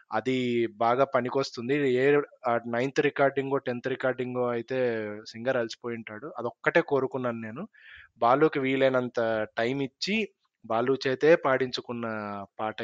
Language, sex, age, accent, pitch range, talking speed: Telugu, male, 20-39, native, 120-145 Hz, 110 wpm